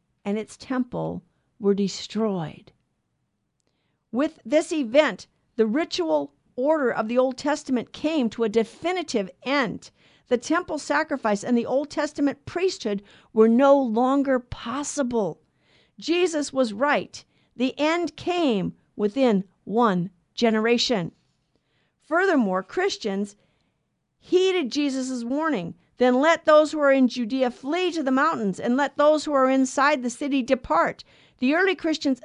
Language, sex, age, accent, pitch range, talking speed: English, female, 50-69, American, 215-290 Hz, 130 wpm